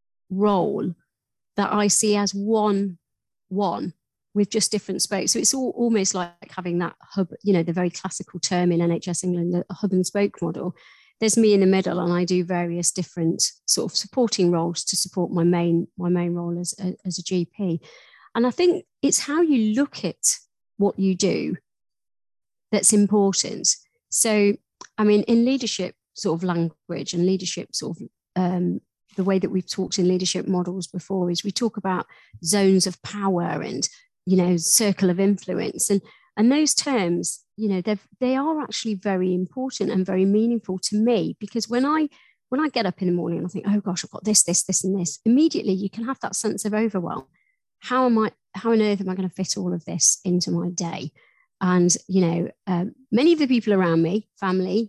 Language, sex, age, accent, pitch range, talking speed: English, female, 40-59, British, 180-215 Hz, 200 wpm